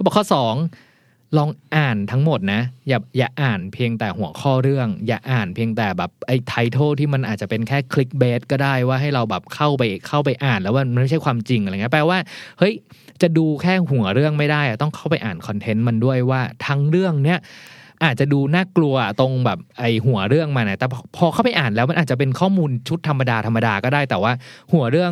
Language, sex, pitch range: Thai, male, 115-150 Hz